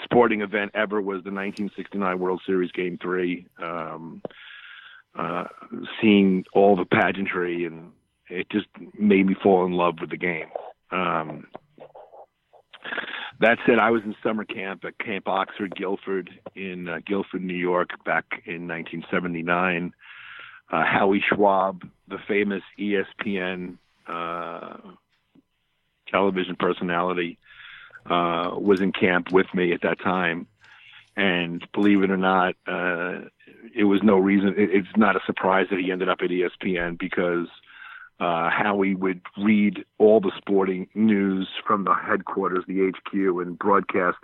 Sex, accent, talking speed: male, American, 135 wpm